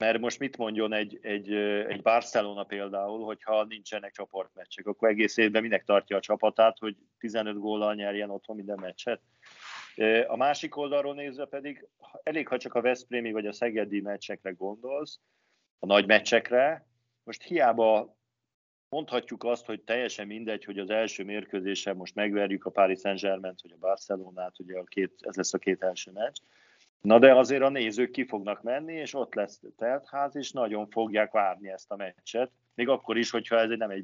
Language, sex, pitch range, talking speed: Hungarian, male, 100-120 Hz, 175 wpm